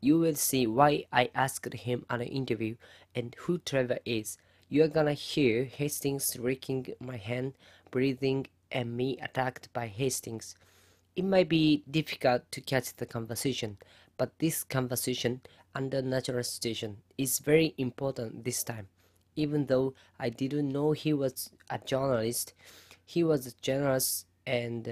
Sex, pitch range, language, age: female, 110-135 Hz, Japanese, 20-39